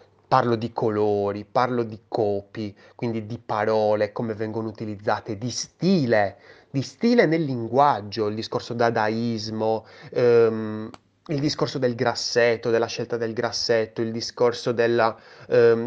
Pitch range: 110-140 Hz